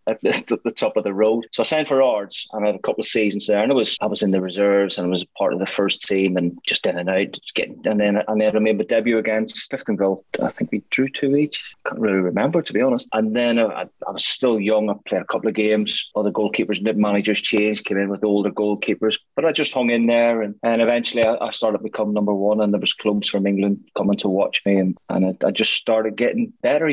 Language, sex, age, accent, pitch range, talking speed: English, male, 20-39, British, 105-120 Hz, 275 wpm